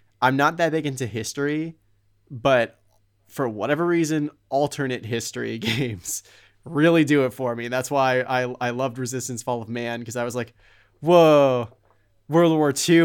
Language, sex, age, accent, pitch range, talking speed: English, male, 20-39, American, 115-140 Hz, 160 wpm